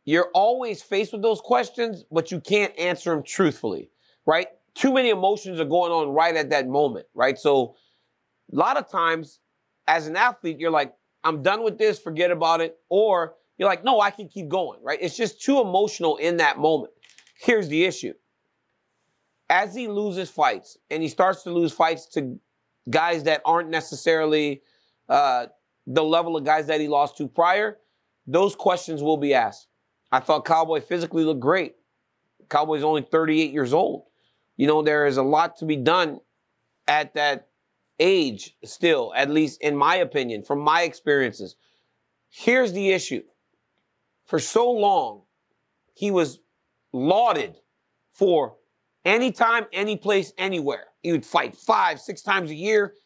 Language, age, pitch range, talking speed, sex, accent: English, 30-49, 155-205 Hz, 165 wpm, male, American